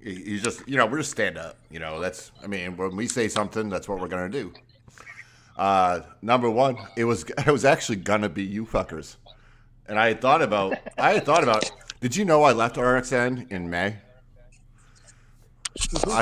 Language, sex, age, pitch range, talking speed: English, male, 40-59, 95-130 Hz, 190 wpm